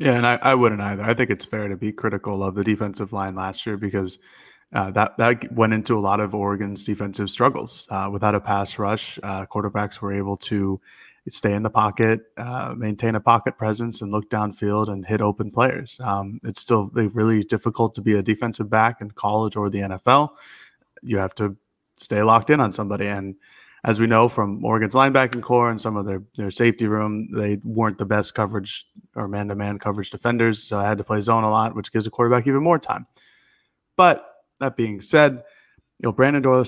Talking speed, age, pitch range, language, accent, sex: 210 wpm, 20-39, 105-115 Hz, English, American, male